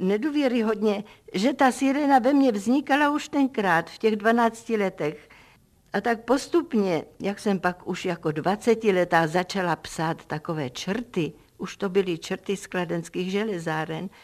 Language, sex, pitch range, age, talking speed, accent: Czech, female, 160-215 Hz, 50-69, 145 wpm, native